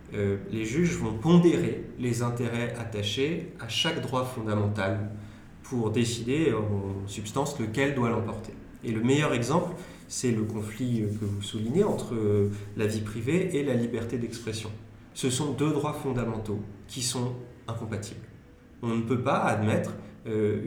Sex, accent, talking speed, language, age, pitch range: male, French, 150 wpm, French, 30-49, 105-130 Hz